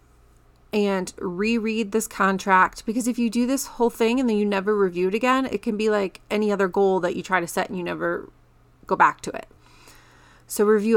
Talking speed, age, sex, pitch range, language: 215 wpm, 30-49, female, 185-225 Hz, English